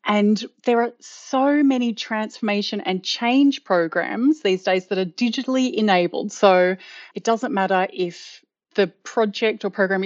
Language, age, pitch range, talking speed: English, 30-49, 205-275 Hz, 145 wpm